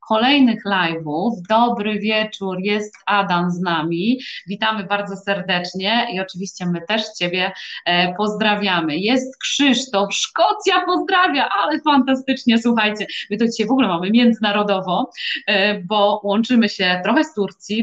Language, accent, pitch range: Polish, native, 195-240 Hz